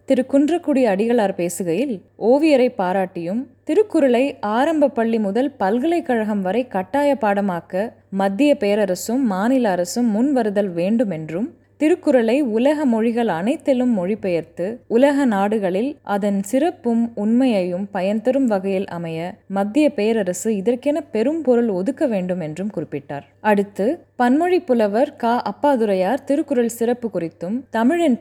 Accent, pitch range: native, 190-260 Hz